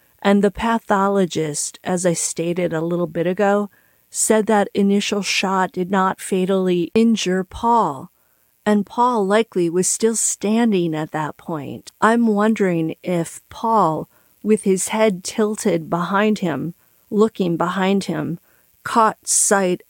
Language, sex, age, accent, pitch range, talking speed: English, female, 40-59, American, 175-210 Hz, 130 wpm